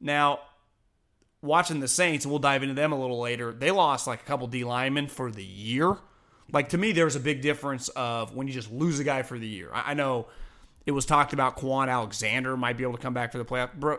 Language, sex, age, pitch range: English, male, 30-49, 130-160 Hz